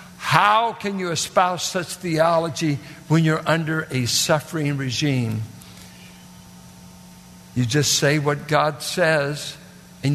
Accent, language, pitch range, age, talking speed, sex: American, English, 115-170 Hz, 60-79, 110 wpm, male